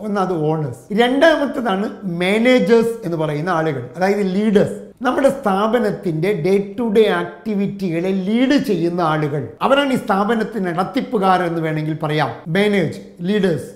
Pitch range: 175-235 Hz